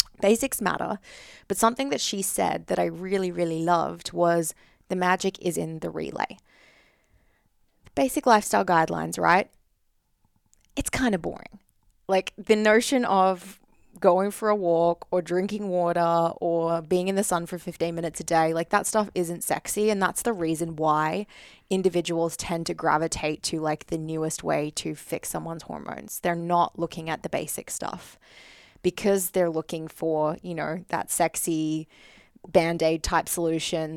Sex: female